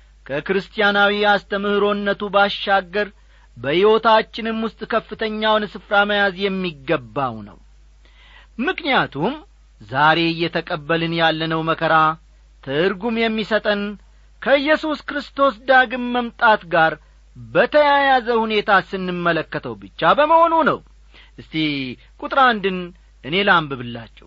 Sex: male